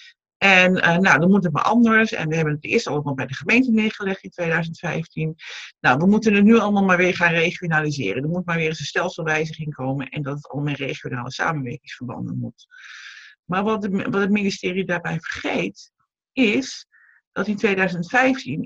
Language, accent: Dutch, Dutch